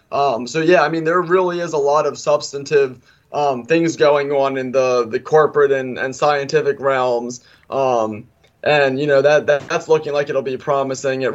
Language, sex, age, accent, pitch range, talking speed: English, male, 20-39, American, 135-160 Hz, 195 wpm